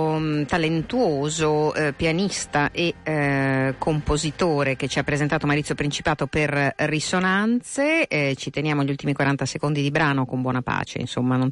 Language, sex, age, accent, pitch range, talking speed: Italian, female, 50-69, native, 135-175 Hz, 145 wpm